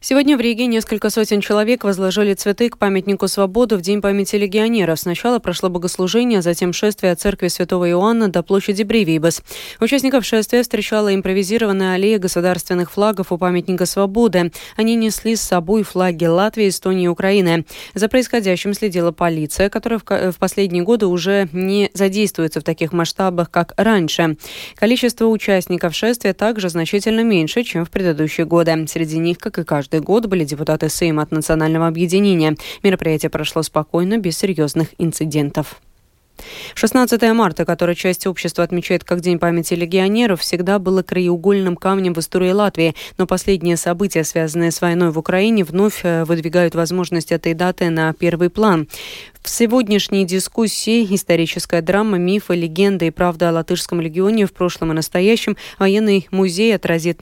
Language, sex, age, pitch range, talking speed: Russian, female, 20-39, 170-205 Hz, 150 wpm